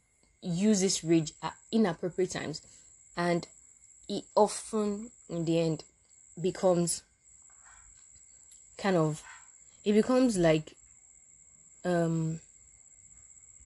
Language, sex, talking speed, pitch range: English, female, 80 wpm, 165-215 Hz